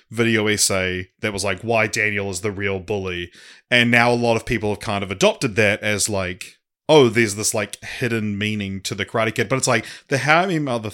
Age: 20-39